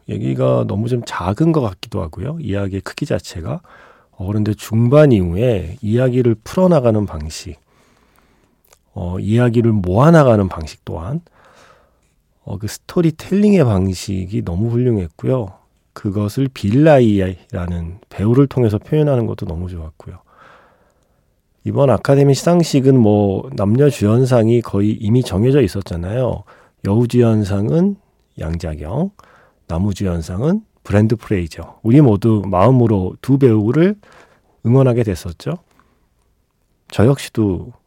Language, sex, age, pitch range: Korean, male, 40-59, 95-125 Hz